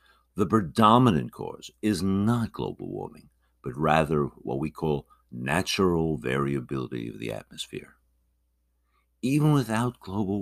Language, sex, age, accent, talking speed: English, male, 60-79, American, 115 wpm